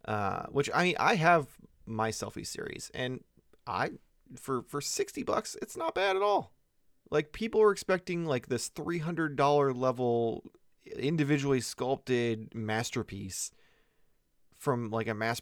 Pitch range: 110-145 Hz